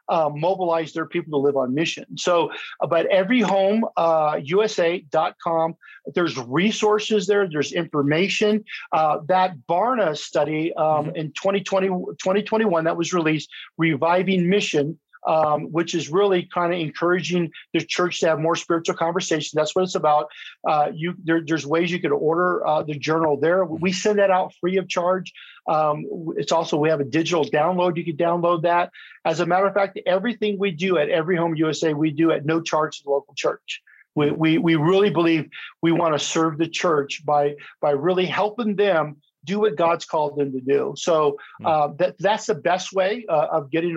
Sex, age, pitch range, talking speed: male, 50-69, 155-185 Hz, 185 wpm